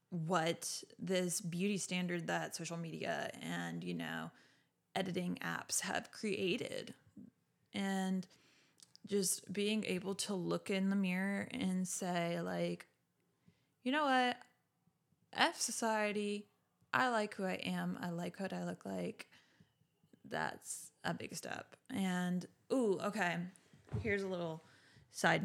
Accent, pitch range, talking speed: American, 175-210 Hz, 125 wpm